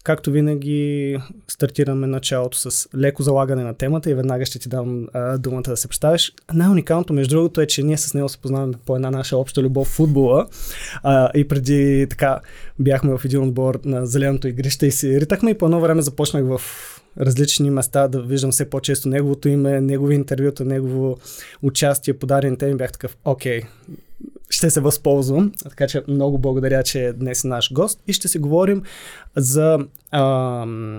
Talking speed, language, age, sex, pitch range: 175 wpm, Bulgarian, 20-39, male, 130-150 Hz